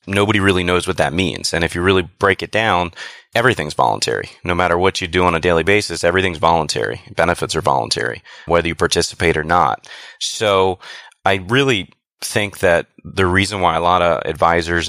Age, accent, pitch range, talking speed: 30-49, American, 80-95 Hz, 185 wpm